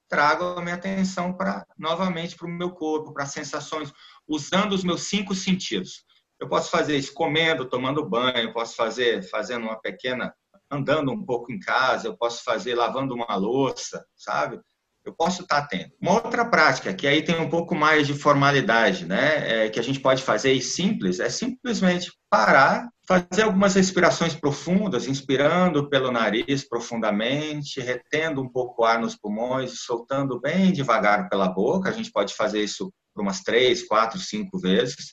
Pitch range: 135-185 Hz